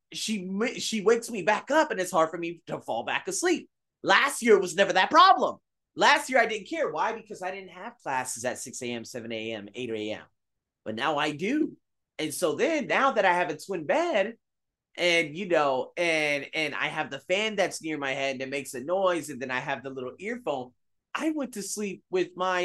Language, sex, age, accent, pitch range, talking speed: English, male, 30-49, American, 135-210 Hz, 220 wpm